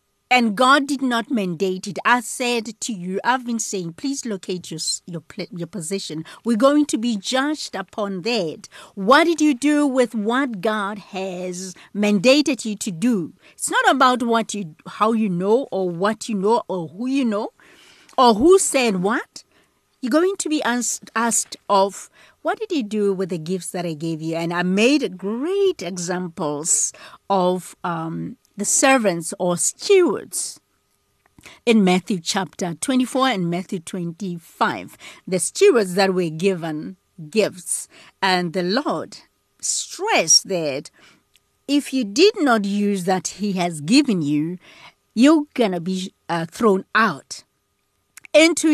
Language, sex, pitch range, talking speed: English, female, 185-265 Hz, 150 wpm